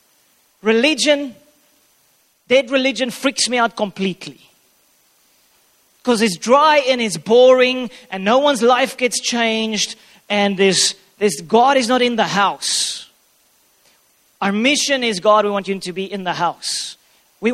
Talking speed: 140 wpm